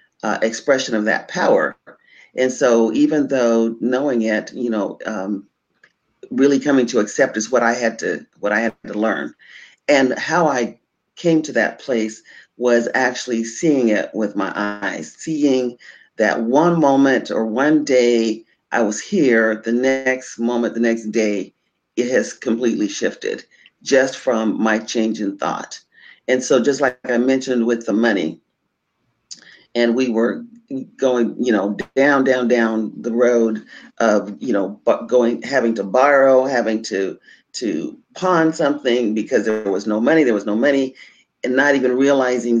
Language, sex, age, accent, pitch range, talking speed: English, male, 40-59, American, 115-140 Hz, 160 wpm